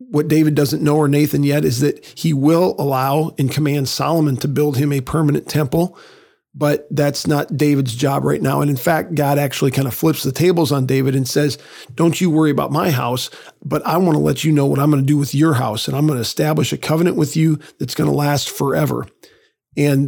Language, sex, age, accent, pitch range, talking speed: English, male, 40-59, American, 140-155 Hz, 235 wpm